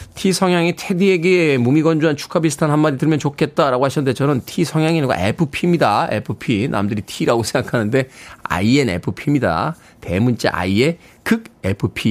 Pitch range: 120-170 Hz